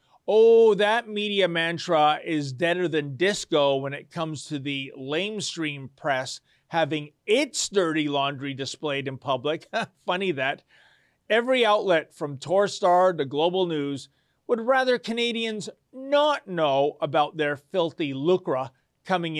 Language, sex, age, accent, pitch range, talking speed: English, male, 40-59, American, 145-210 Hz, 125 wpm